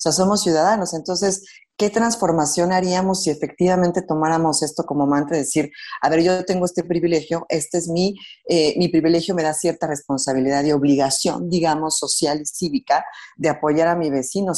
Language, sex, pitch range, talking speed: Spanish, female, 150-195 Hz, 175 wpm